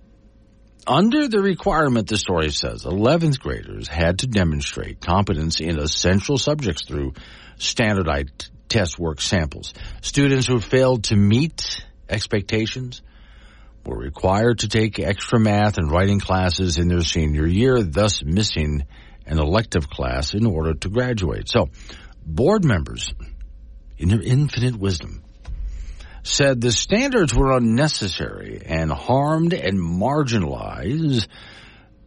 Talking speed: 120 wpm